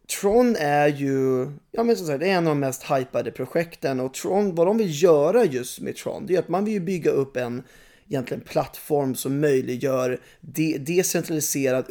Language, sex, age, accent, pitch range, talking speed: English, male, 20-39, Swedish, 130-170 Hz, 185 wpm